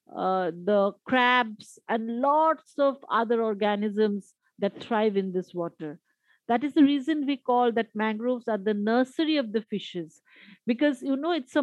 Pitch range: 210-275 Hz